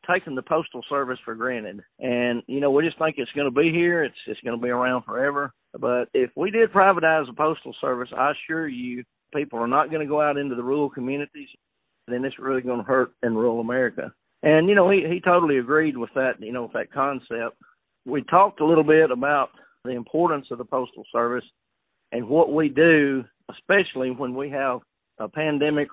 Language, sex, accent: English, male, American